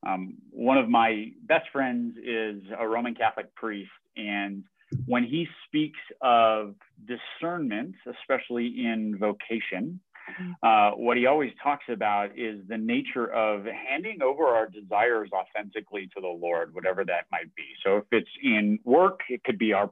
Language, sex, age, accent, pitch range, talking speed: English, male, 30-49, American, 110-155 Hz, 155 wpm